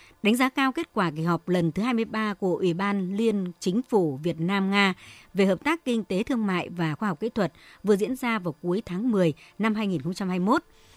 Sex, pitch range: male, 180-235 Hz